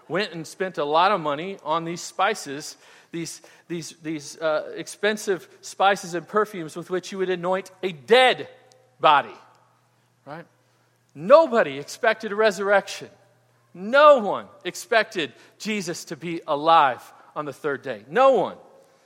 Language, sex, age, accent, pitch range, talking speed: English, male, 40-59, American, 160-210 Hz, 140 wpm